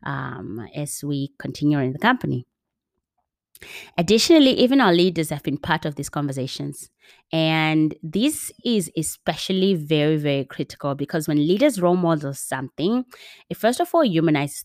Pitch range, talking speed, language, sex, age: 140-175 Hz, 145 wpm, English, female, 20-39